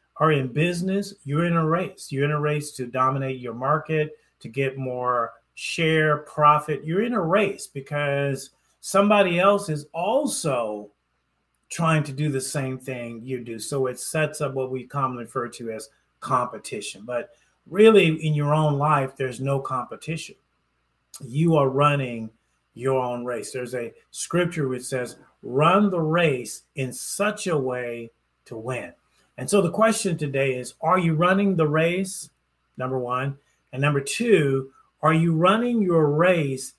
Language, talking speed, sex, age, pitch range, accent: English, 160 wpm, male, 40-59, 120-160 Hz, American